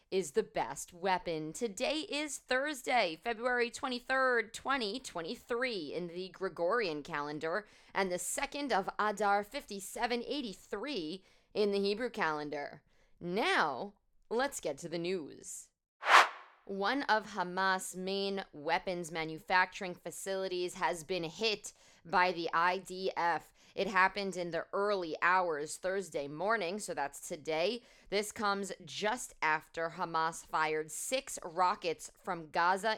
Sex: female